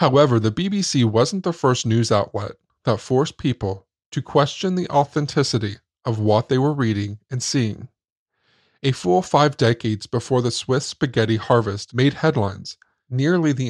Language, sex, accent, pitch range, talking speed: English, male, American, 110-140 Hz, 155 wpm